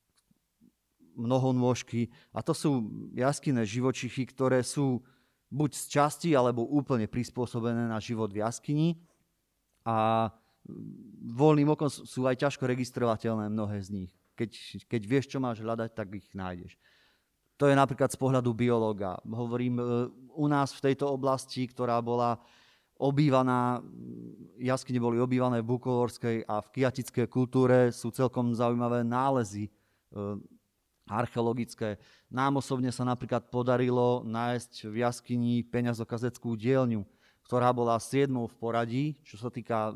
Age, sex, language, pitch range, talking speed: 30-49, male, Slovak, 115-130 Hz, 125 wpm